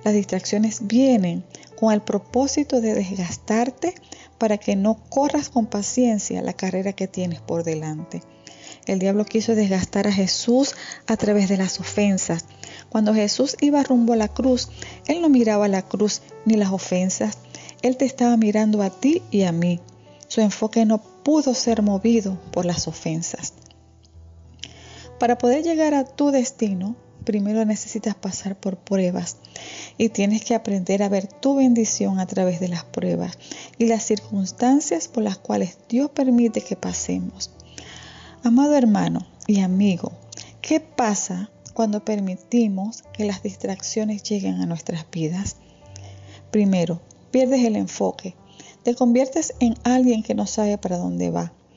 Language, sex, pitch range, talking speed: Spanish, female, 180-235 Hz, 145 wpm